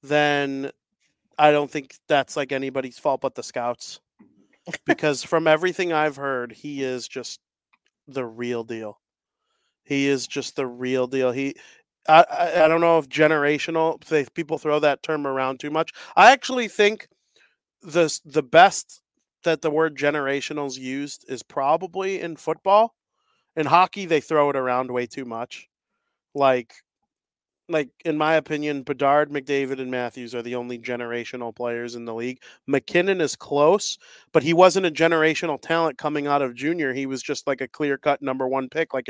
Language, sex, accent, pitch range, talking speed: English, male, American, 135-160 Hz, 165 wpm